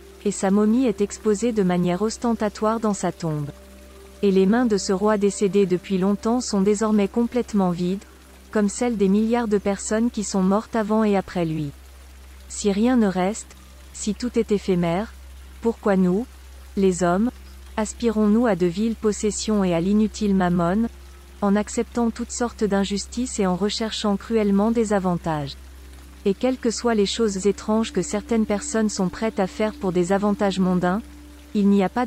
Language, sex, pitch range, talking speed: French, female, 185-220 Hz, 170 wpm